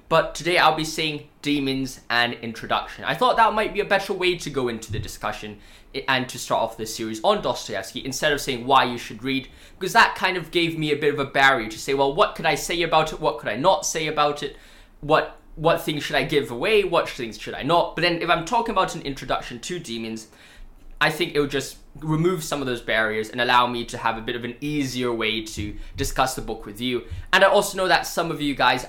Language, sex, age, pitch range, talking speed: English, male, 10-29, 120-170 Hz, 250 wpm